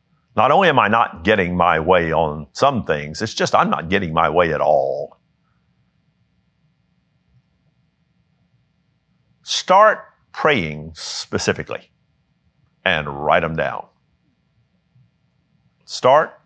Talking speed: 100 wpm